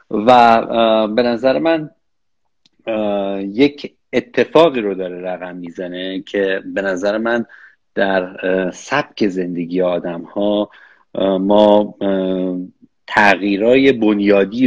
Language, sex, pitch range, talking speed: Persian, male, 95-115 Hz, 90 wpm